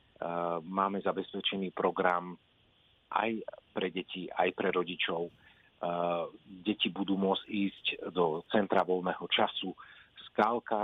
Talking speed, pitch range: 100 wpm, 90-100 Hz